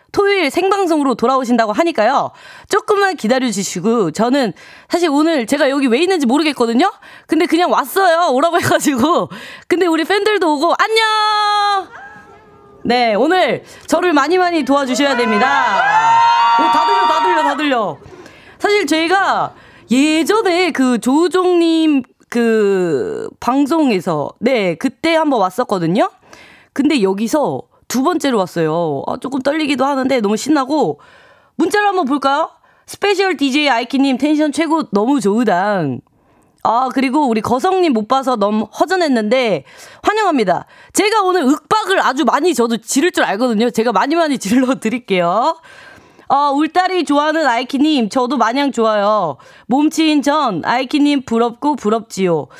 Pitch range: 235-340 Hz